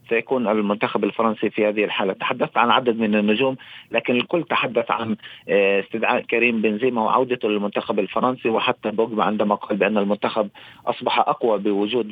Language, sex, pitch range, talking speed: Arabic, male, 105-130 Hz, 150 wpm